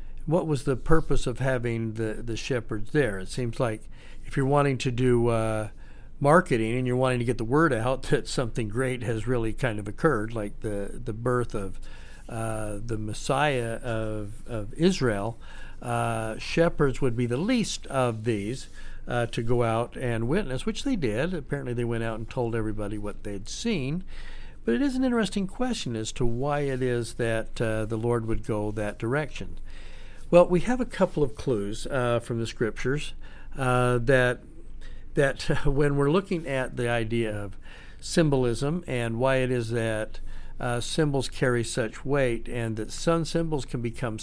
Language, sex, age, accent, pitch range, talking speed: English, male, 60-79, American, 110-140 Hz, 180 wpm